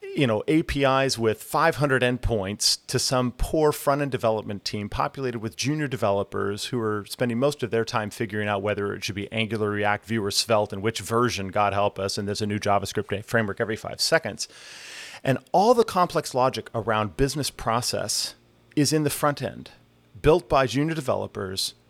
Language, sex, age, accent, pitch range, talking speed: English, male, 30-49, American, 100-130 Hz, 180 wpm